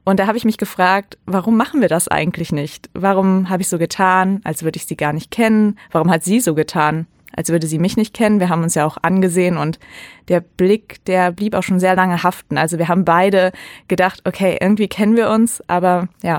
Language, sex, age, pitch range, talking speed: German, female, 20-39, 170-205 Hz, 230 wpm